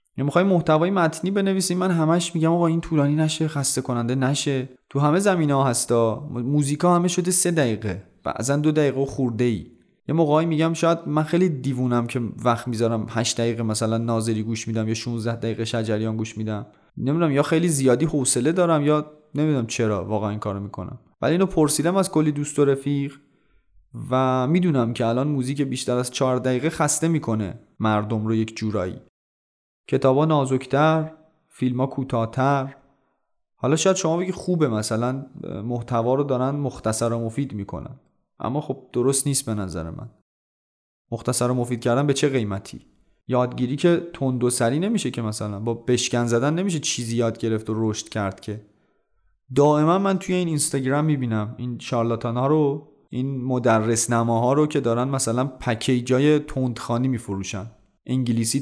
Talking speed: 160 wpm